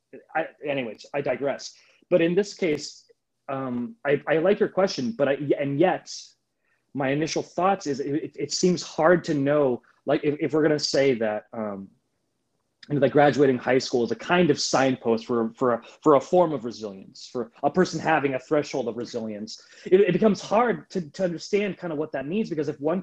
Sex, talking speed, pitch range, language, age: male, 205 wpm, 135-175 Hz, English, 30-49